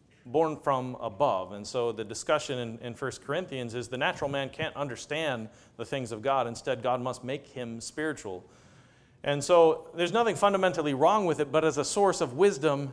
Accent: American